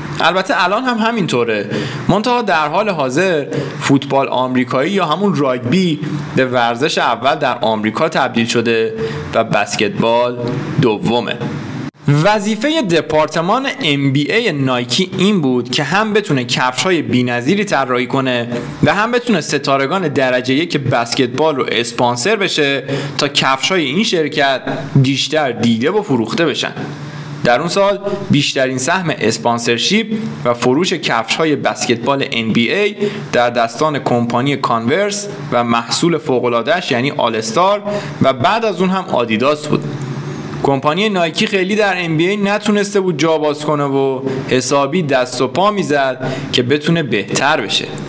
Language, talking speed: Persian, 130 wpm